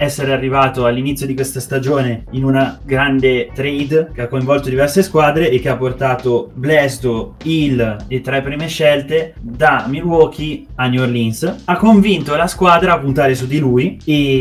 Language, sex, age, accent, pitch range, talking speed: Italian, male, 20-39, native, 130-155 Hz, 165 wpm